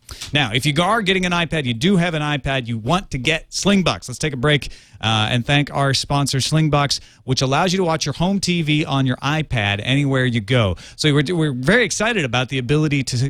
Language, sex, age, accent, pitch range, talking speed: English, male, 40-59, American, 125-175 Hz, 220 wpm